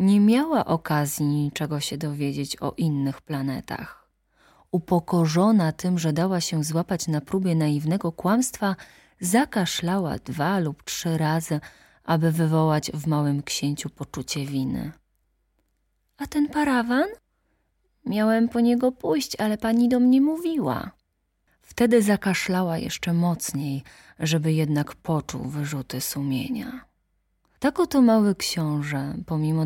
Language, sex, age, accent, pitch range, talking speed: Polish, female, 30-49, native, 150-200 Hz, 115 wpm